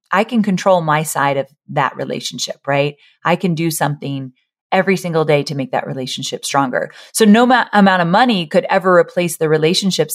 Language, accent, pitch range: English, American, 155-195 Hz